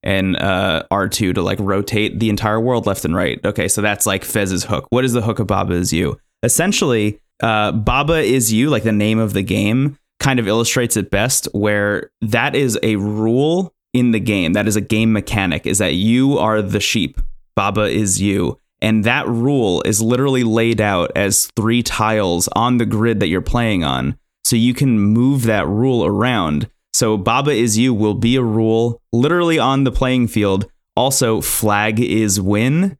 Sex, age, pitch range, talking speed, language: male, 20-39, 100-120 Hz, 190 wpm, English